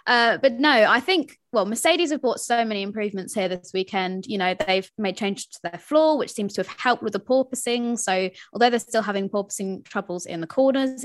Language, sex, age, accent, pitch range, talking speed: English, female, 20-39, British, 195-245 Hz, 225 wpm